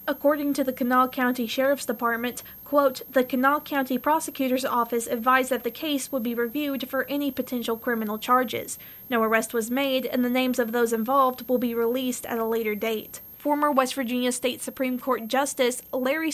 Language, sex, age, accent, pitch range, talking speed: English, female, 20-39, American, 235-265 Hz, 185 wpm